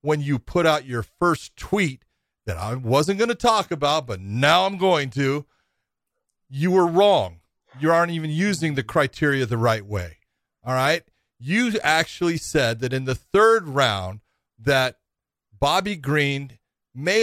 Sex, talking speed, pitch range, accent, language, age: male, 155 wpm, 120-170 Hz, American, English, 40-59